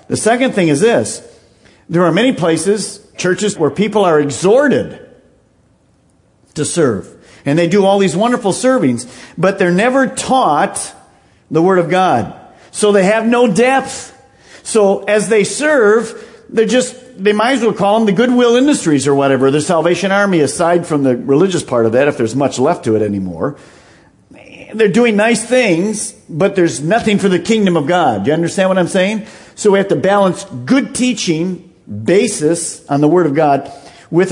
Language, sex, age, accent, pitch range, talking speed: English, male, 50-69, American, 145-210 Hz, 180 wpm